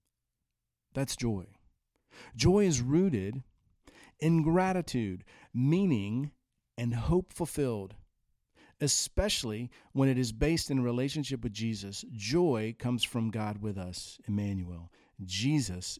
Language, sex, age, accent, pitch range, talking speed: English, male, 40-59, American, 110-145 Hz, 105 wpm